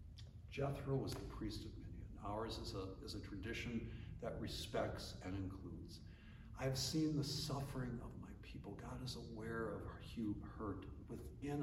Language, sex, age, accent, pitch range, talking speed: English, male, 60-79, American, 90-120 Hz, 160 wpm